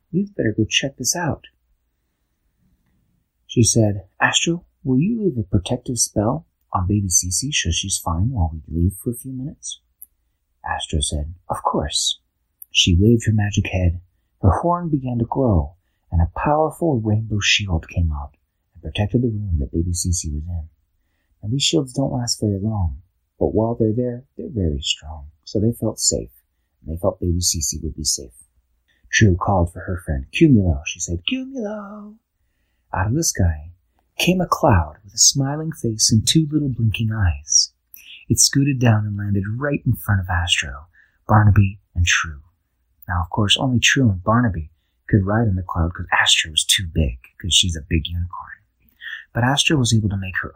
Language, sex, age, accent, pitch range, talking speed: English, male, 40-59, American, 80-115 Hz, 180 wpm